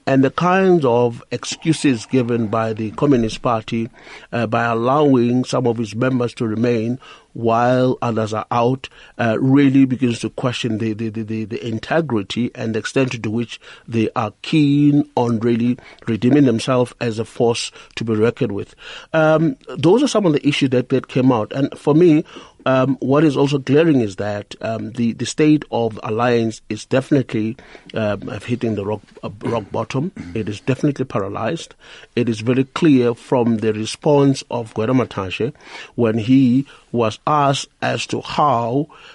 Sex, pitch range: male, 115-145 Hz